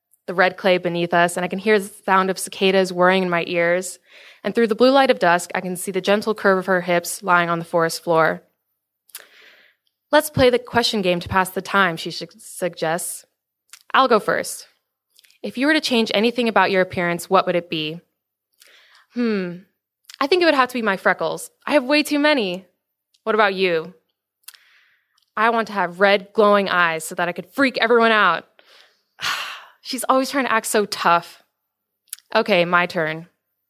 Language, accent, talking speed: English, American, 190 wpm